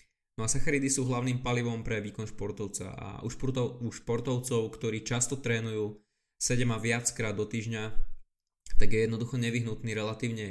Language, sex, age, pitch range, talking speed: Slovak, male, 20-39, 110-125 Hz, 145 wpm